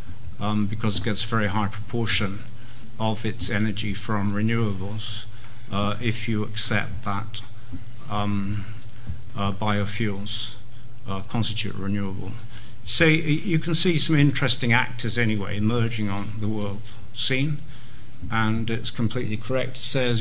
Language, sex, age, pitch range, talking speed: English, male, 50-69, 110-125 Hz, 130 wpm